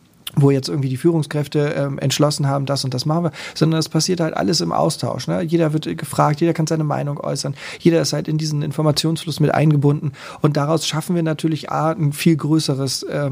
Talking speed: 210 wpm